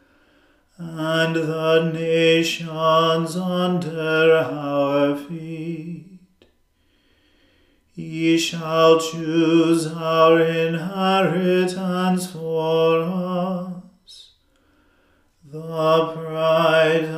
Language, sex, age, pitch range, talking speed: English, male, 40-59, 160-175 Hz, 50 wpm